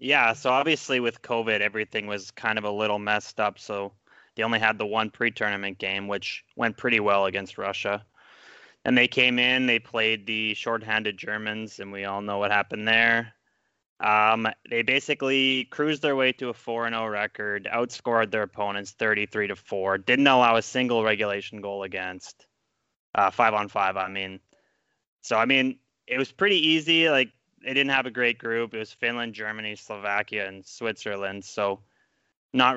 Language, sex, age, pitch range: English, male, 20-39, 105-120 Hz